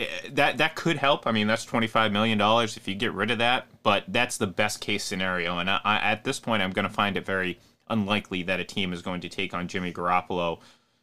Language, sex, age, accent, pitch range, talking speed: English, male, 30-49, American, 95-120 Hz, 235 wpm